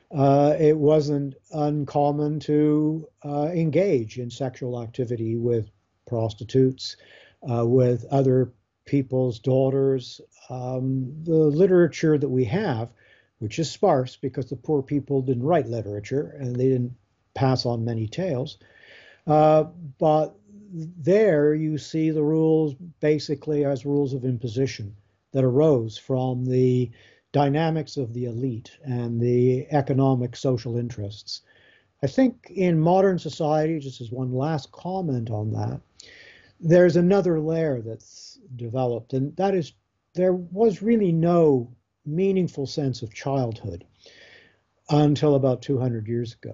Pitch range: 120-155 Hz